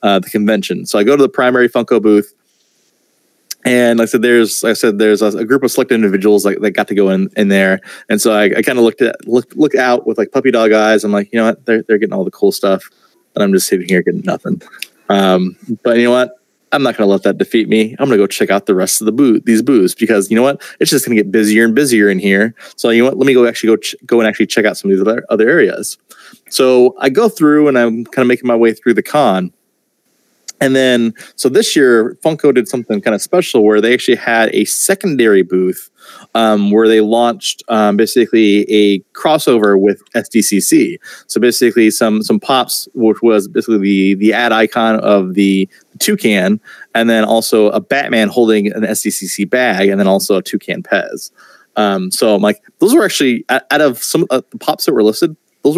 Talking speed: 230 wpm